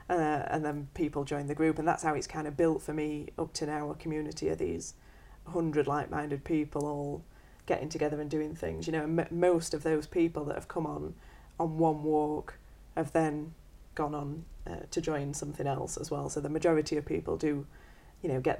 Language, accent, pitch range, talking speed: English, British, 150-170 Hz, 215 wpm